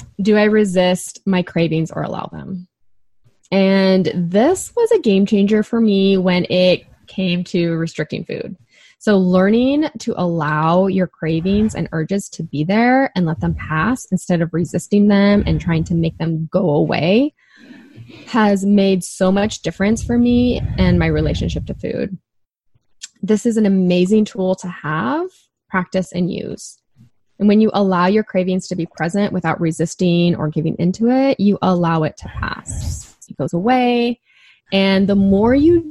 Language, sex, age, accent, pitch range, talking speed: English, female, 10-29, American, 165-205 Hz, 160 wpm